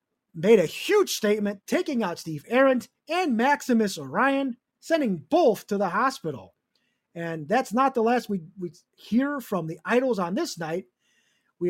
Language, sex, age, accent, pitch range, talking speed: English, male, 30-49, American, 180-280 Hz, 160 wpm